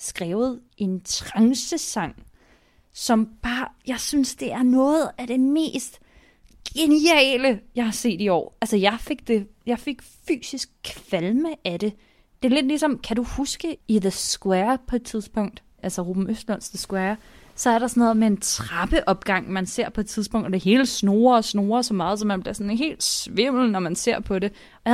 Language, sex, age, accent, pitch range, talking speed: Danish, female, 20-39, native, 190-245 Hz, 195 wpm